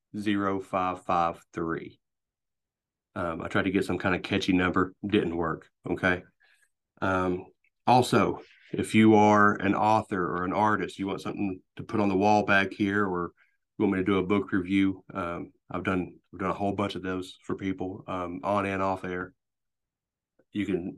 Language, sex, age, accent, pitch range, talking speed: English, male, 30-49, American, 90-105 Hz, 185 wpm